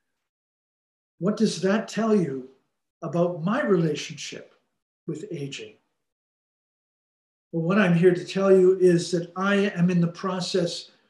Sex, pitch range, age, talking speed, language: male, 165-195 Hz, 50-69, 130 wpm, English